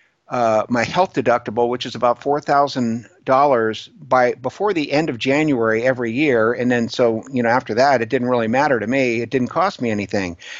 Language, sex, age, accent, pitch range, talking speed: English, male, 50-69, American, 120-150 Hz, 195 wpm